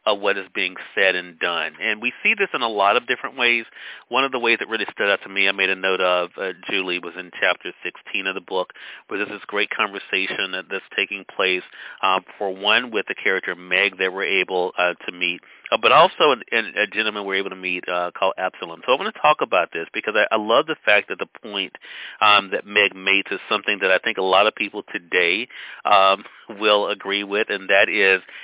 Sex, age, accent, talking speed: male, 40-59, American, 235 wpm